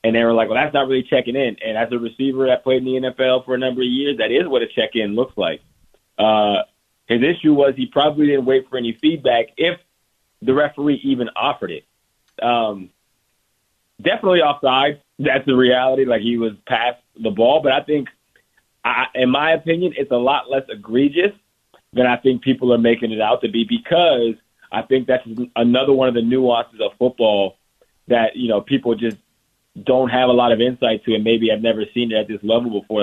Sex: male